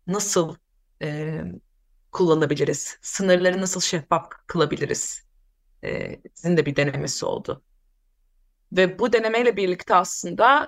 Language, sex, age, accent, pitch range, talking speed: Turkish, female, 30-49, native, 170-215 Hz, 100 wpm